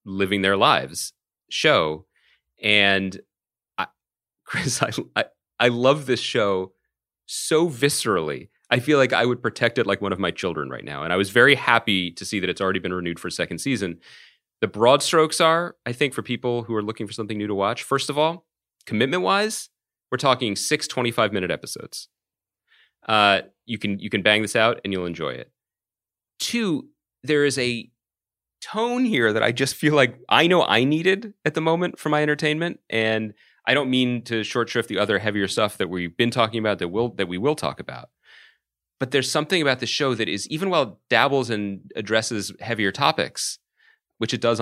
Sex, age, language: male, 30-49, English